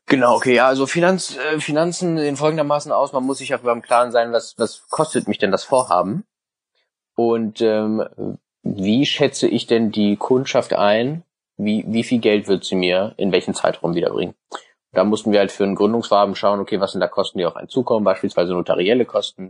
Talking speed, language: 200 wpm, German